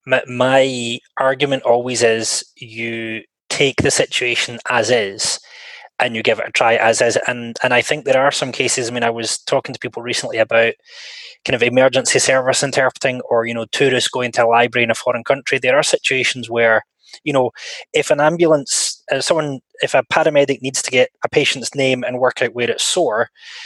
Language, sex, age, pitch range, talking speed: English, male, 20-39, 120-150 Hz, 200 wpm